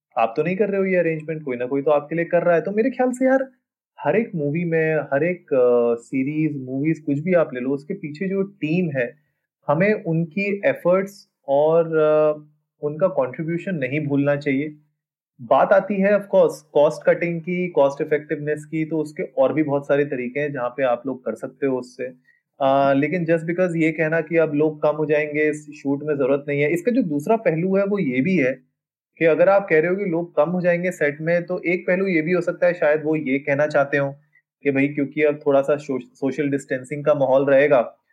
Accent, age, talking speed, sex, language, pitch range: native, 30-49, 220 wpm, male, Hindi, 135-170 Hz